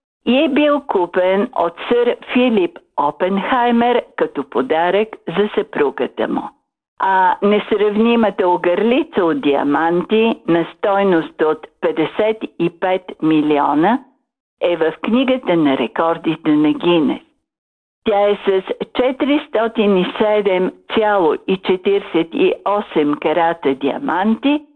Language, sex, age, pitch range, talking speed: Bulgarian, female, 50-69, 175-255 Hz, 85 wpm